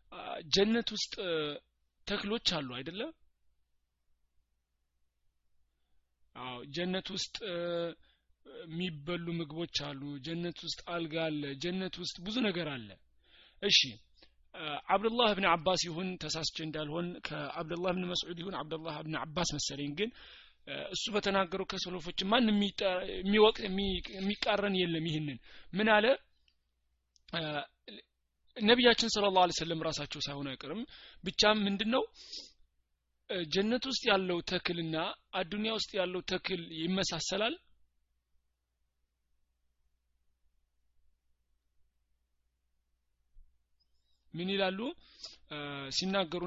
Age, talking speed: 30-49, 85 wpm